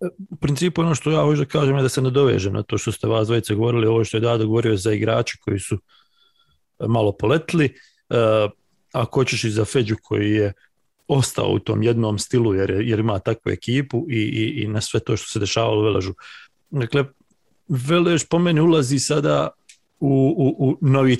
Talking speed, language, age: 190 wpm, English, 40-59